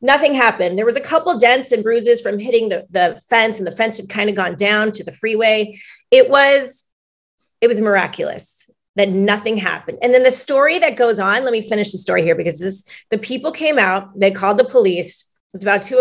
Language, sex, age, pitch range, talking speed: English, female, 30-49, 200-255 Hz, 225 wpm